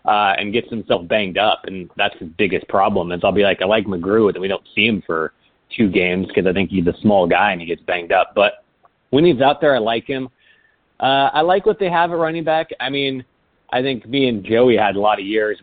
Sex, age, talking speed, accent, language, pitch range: male, 30-49, 255 wpm, American, English, 95-120 Hz